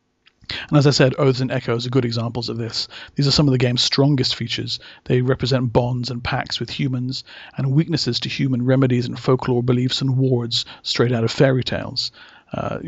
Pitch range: 120-140 Hz